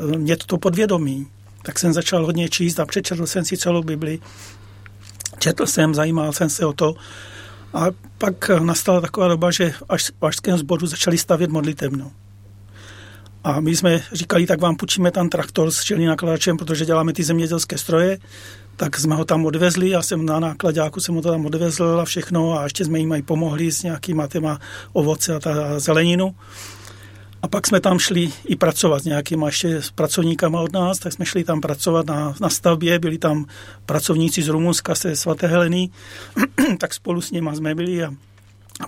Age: 40-59